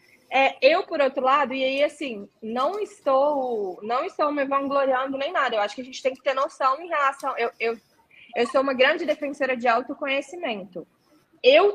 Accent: Brazilian